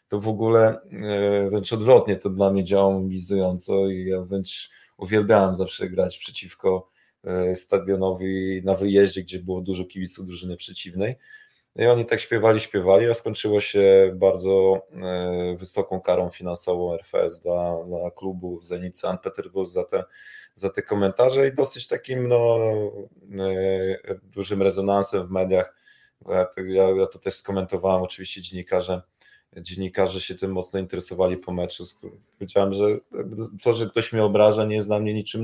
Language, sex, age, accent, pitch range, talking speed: Polish, male, 20-39, native, 95-105 Hz, 140 wpm